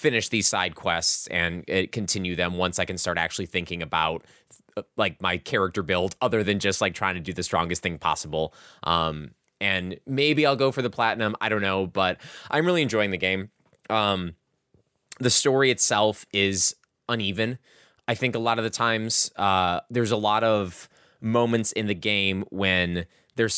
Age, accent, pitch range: 20-39, American, 90-120 Hz